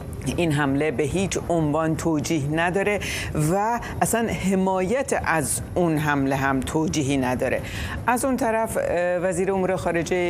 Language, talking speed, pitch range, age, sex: Persian, 130 wpm, 145-180 Hz, 60-79, female